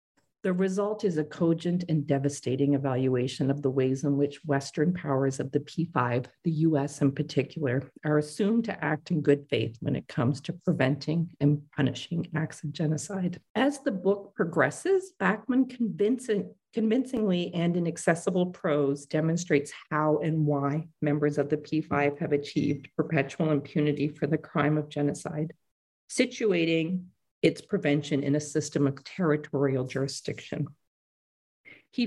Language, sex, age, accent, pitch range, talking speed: English, female, 40-59, American, 145-185 Hz, 140 wpm